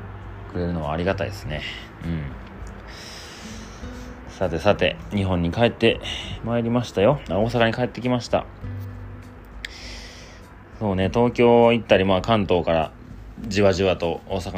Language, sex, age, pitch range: Japanese, male, 30-49, 85-105 Hz